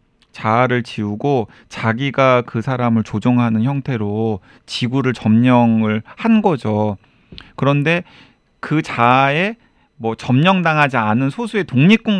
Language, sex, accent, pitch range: Korean, male, native, 115-165 Hz